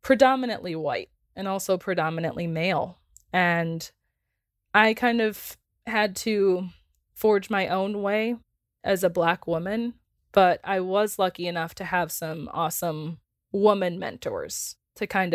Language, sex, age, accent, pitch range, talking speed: English, female, 20-39, American, 165-195 Hz, 130 wpm